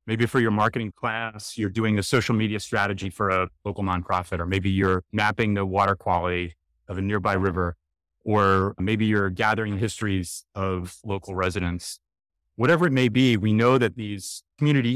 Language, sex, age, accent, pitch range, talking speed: English, male, 30-49, American, 95-120 Hz, 175 wpm